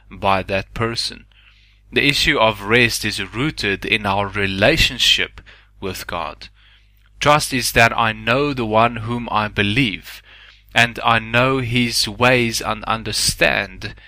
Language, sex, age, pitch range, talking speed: English, male, 20-39, 100-115 Hz, 130 wpm